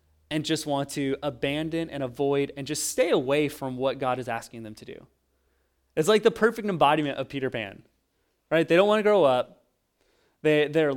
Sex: male